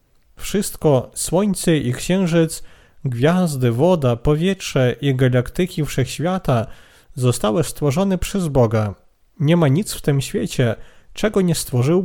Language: Polish